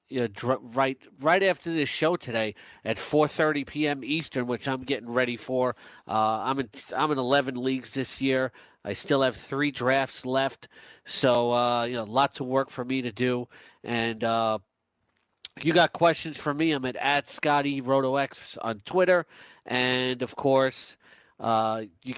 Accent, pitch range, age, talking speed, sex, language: American, 120-140 Hz, 40-59, 170 wpm, male, English